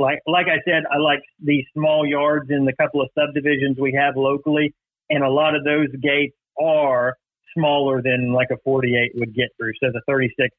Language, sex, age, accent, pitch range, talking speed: English, male, 40-59, American, 135-165 Hz, 200 wpm